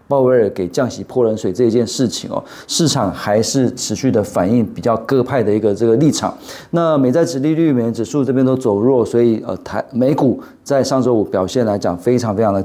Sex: male